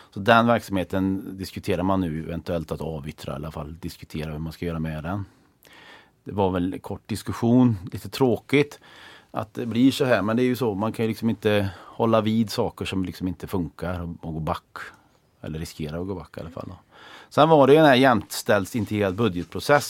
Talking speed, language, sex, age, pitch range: 210 wpm, English, male, 40-59, 85-110 Hz